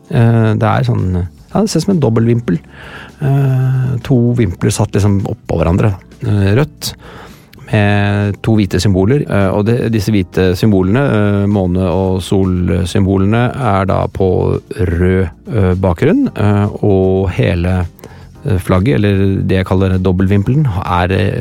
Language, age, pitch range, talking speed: English, 30-49, 90-110 Hz, 120 wpm